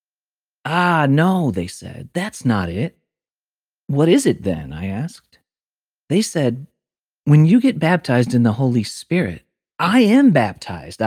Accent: American